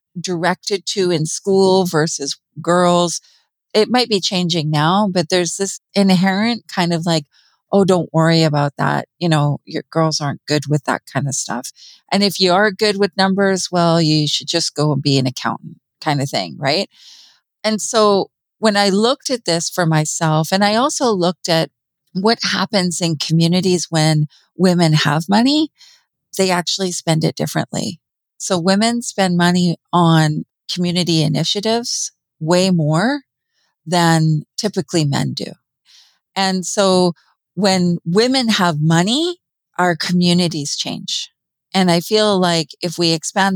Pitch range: 155-195 Hz